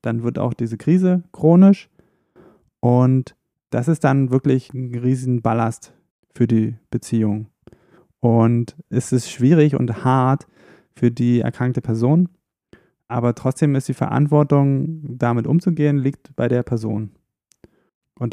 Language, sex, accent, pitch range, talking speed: German, male, German, 115-140 Hz, 130 wpm